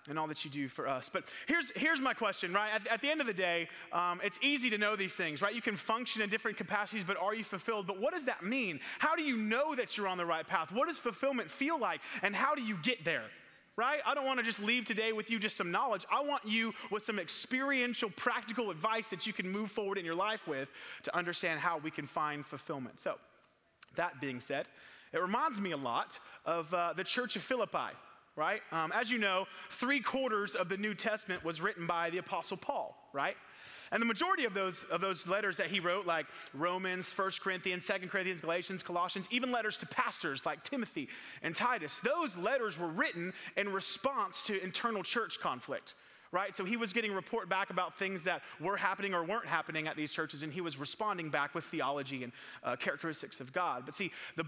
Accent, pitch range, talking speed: American, 175-230 Hz, 225 wpm